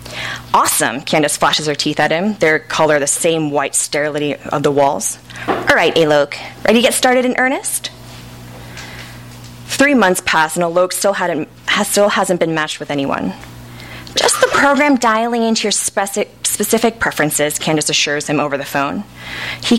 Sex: female